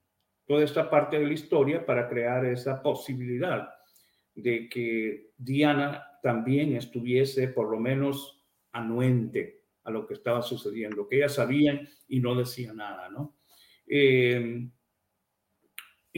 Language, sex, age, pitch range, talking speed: Spanish, male, 50-69, 120-150 Hz, 120 wpm